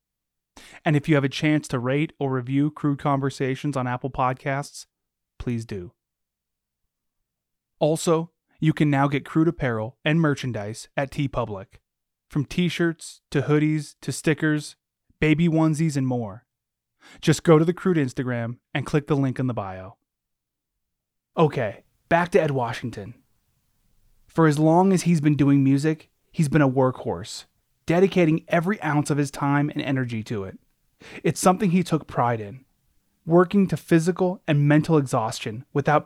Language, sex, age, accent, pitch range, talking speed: English, male, 20-39, American, 125-160 Hz, 150 wpm